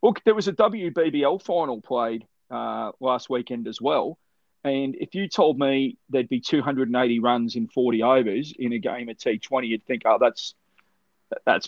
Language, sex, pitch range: English, male, 120-145 Hz